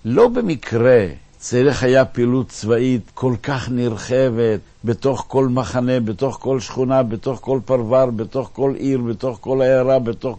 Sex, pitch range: male, 115-155 Hz